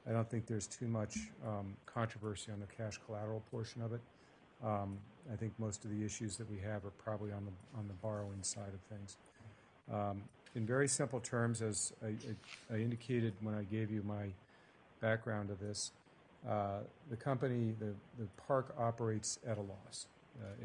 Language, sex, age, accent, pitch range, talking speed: English, male, 50-69, American, 105-115 Hz, 185 wpm